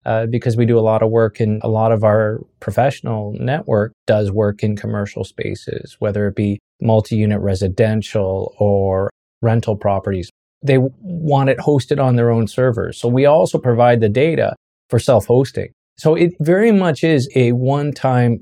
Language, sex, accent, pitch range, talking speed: English, male, American, 110-135 Hz, 165 wpm